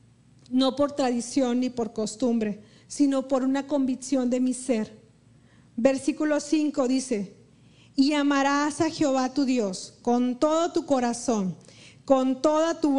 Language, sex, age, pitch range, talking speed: Spanish, female, 40-59, 255-305 Hz, 135 wpm